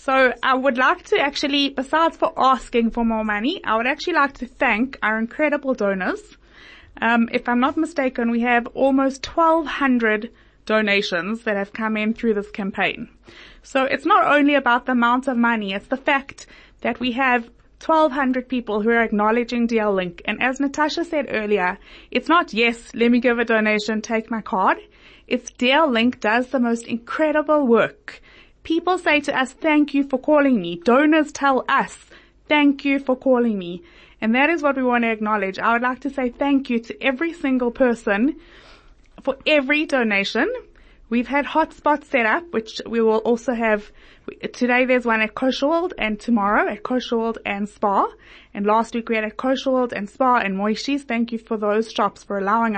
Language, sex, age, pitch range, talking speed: English, female, 20-39, 225-280 Hz, 185 wpm